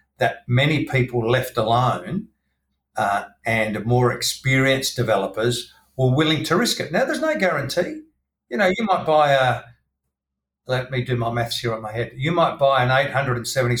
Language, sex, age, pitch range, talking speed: English, male, 50-69, 115-145 Hz, 170 wpm